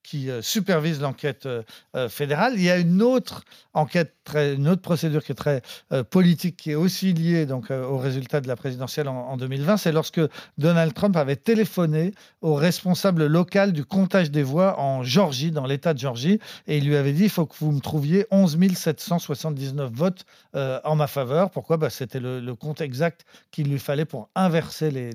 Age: 50-69